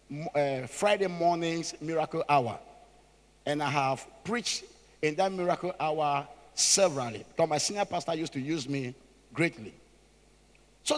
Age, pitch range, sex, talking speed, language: 50-69, 165-265 Hz, male, 130 wpm, English